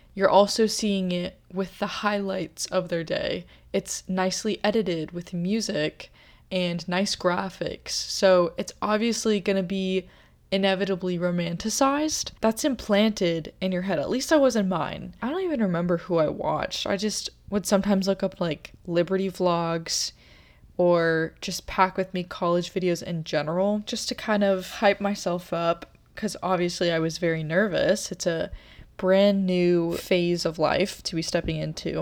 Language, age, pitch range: English, 20-39, 175-205 Hz